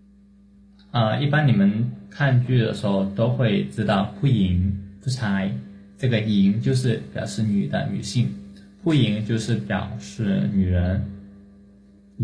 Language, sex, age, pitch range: Chinese, male, 20-39, 100-115 Hz